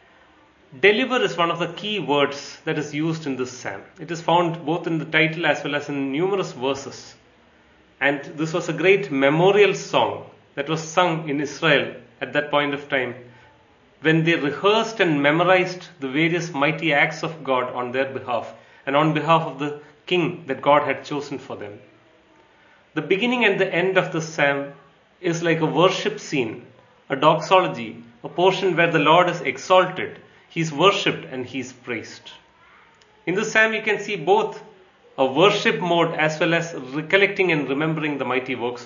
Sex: male